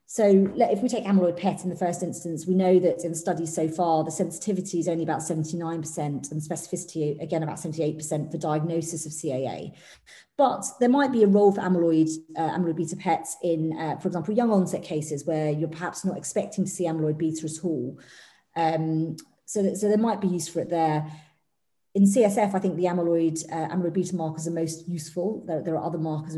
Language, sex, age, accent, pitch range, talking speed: English, female, 30-49, British, 160-185 Hz, 210 wpm